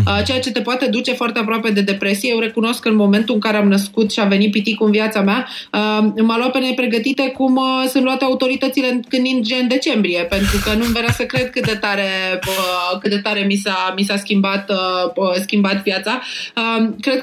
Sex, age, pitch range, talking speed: female, 20-39, 210-255 Hz, 200 wpm